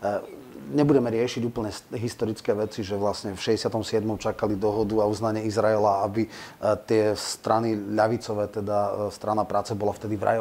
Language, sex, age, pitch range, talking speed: Slovak, male, 30-49, 105-120 Hz, 140 wpm